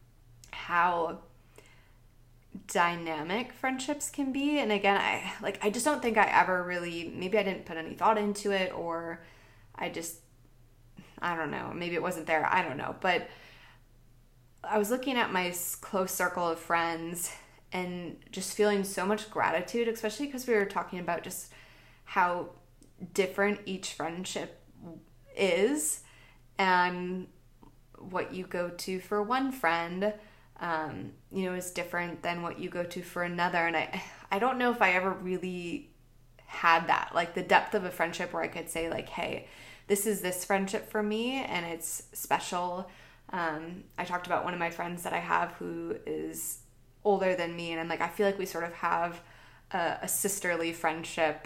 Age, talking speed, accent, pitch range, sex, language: 20-39, 170 wpm, American, 165-195 Hz, female, English